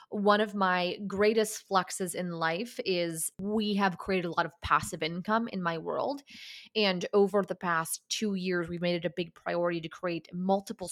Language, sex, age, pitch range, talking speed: English, female, 20-39, 175-210 Hz, 185 wpm